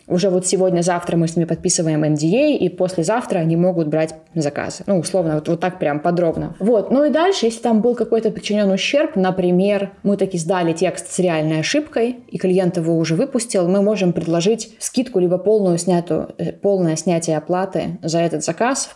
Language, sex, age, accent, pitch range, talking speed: Ukrainian, female, 20-39, native, 175-220 Hz, 180 wpm